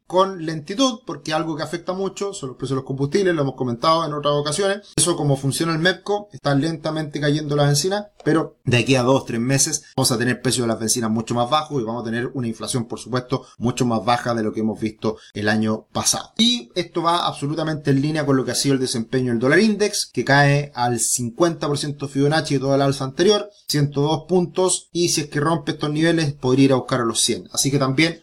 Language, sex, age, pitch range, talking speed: Spanish, male, 30-49, 120-150 Hz, 230 wpm